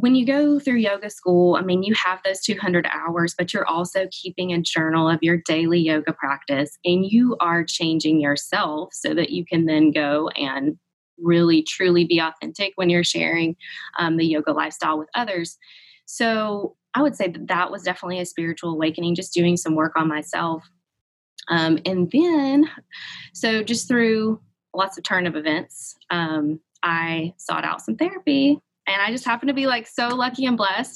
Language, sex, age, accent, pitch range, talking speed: English, female, 20-39, American, 170-225 Hz, 180 wpm